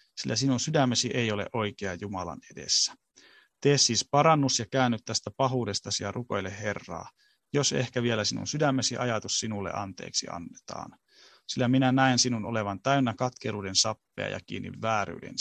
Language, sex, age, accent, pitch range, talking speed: Finnish, male, 30-49, native, 105-130 Hz, 150 wpm